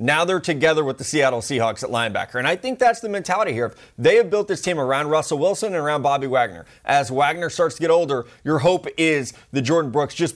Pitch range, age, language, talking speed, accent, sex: 145-185 Hz, 20-39, English, 240 wpm, American, male